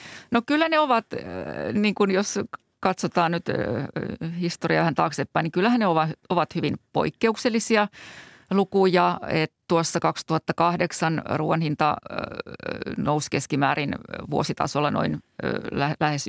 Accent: native